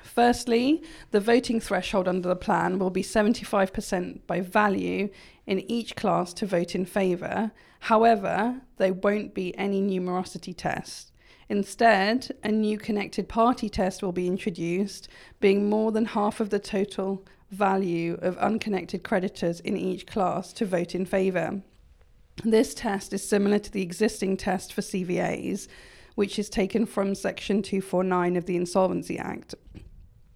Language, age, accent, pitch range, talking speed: English, 40-59, British, 180-215 Hz, 145 wpm